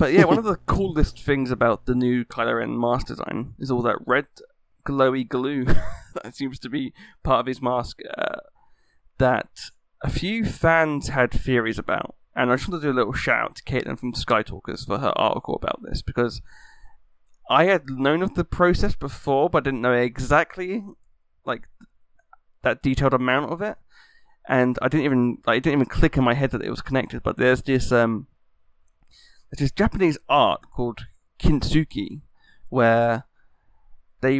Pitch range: 120-145 Hz